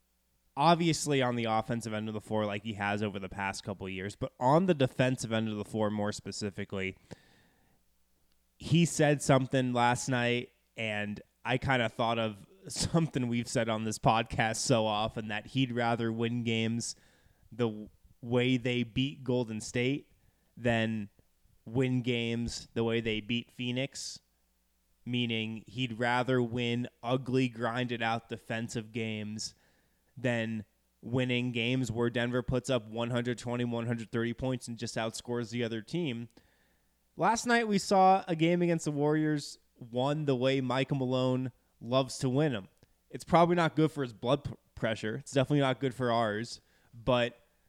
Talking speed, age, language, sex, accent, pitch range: 155 wpm, 20-39, English, male, American, 110-130 Hz